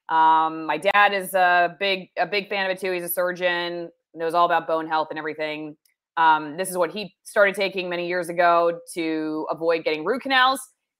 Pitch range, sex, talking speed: 170-195 Hz, female, 200 wpm